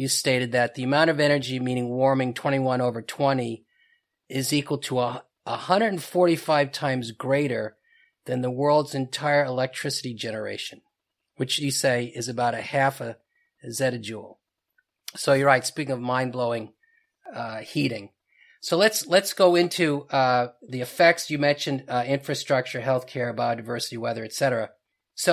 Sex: male